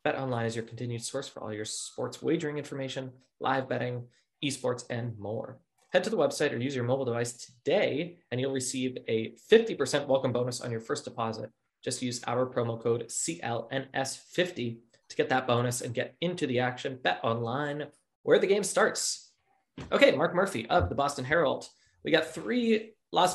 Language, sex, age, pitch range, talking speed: English, male, 20-39, 120-145 Hz, 175 wpm